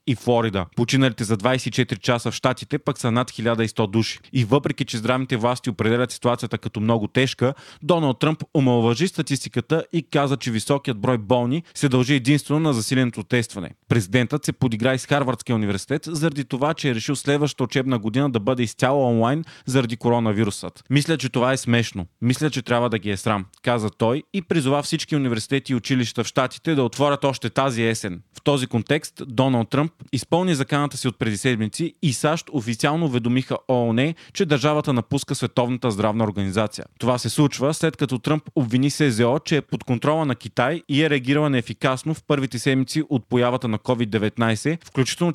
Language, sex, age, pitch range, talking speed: Bulgarian, male, 30-49, 115-145 Hz, 180 wpm